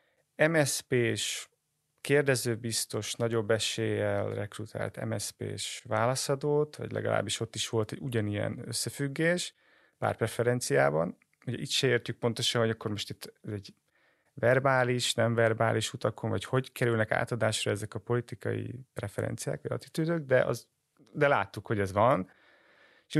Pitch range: 110-140 Hz